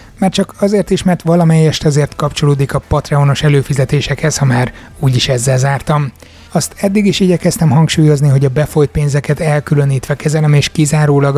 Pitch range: 130-155 Hz